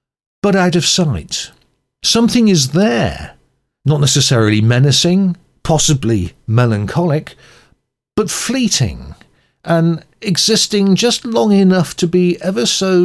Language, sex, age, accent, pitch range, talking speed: English, male, 50-69, British, 130-180 Hz, 105 wpm